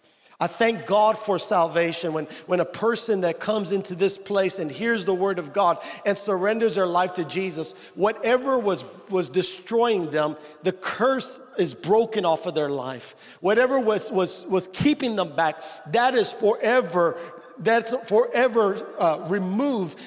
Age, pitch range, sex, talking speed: 50-69, 180-240 Hz, male, 160 wpm